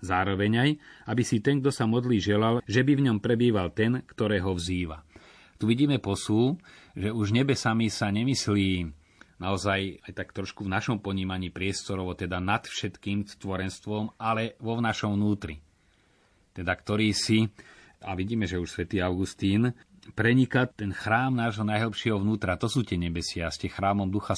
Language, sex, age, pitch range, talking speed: Slovak, male, 30-49, 90-110 Hz, 160 wpm